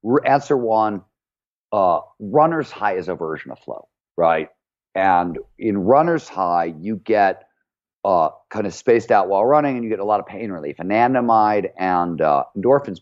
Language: English